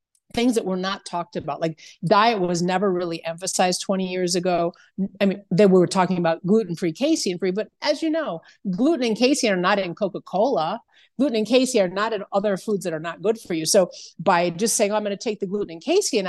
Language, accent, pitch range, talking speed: English, American, 165-215 Hz, 220 wpm